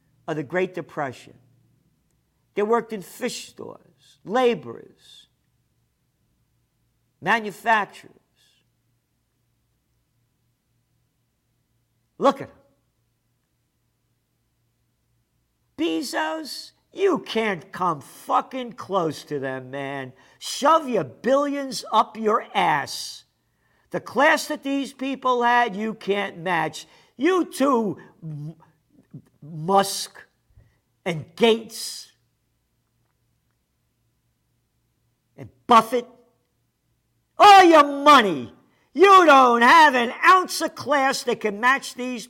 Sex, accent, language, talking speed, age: male, American, English, 85 wpm, 50-69